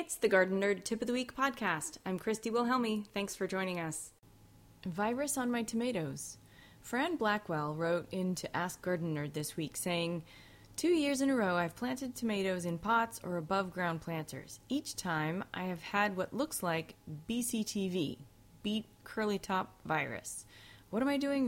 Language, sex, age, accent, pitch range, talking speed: English, female, 30-49, American, 165-235 Hz, 175 wpm